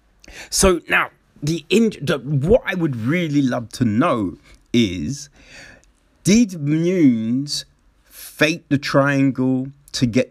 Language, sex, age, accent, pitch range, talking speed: English, male, 30-49, British, 110-145 Hz, 115 wpm